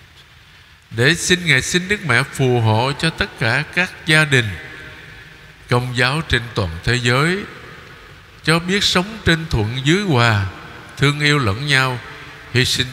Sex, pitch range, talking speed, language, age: male, 110-150 Hz, 155 wpm, Vietnamese, 60-79